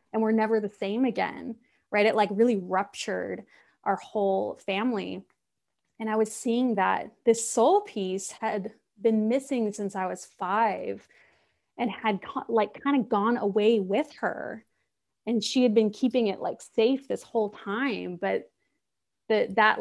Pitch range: 200-235 Hz